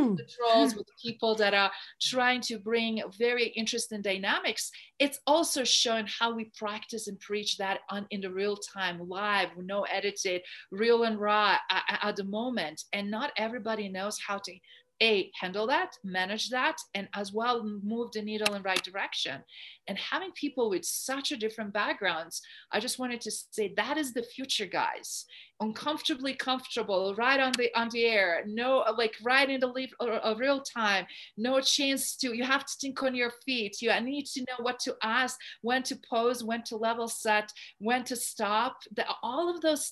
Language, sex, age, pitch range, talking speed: English, female, 40-59, 205-255 Hz, 185 wpm